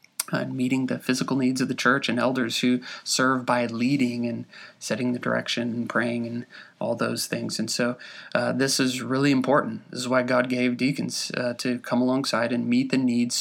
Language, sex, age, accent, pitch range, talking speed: English, male, 20-39, American, 120-135 Hz, 200 wpm